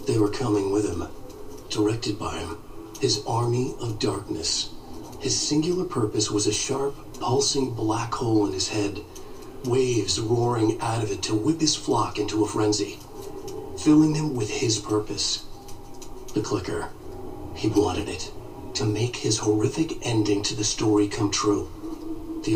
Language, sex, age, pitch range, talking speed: English, male, 40-59, 105-140 Hz, 150 wpm